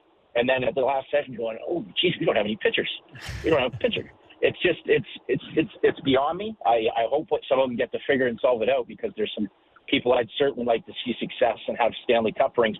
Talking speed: 265 wpm